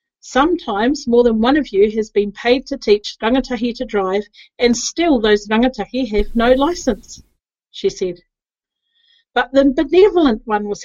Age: 40-59